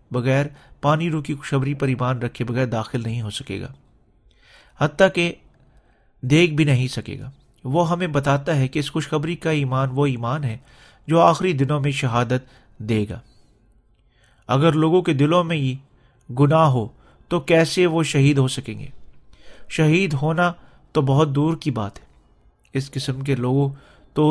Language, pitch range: Urdu, 125-155 Hz